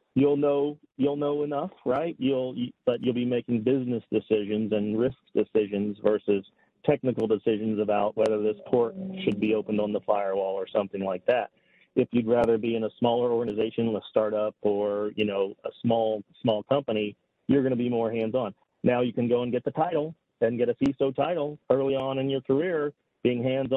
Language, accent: English, American